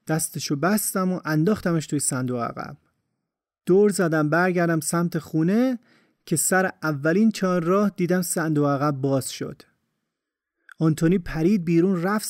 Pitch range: 150-195 Hz